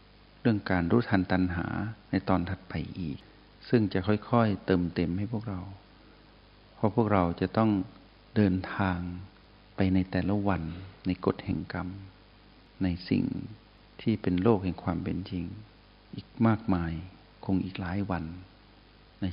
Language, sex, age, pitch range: Thai, male, 60-79, 95-105 Hz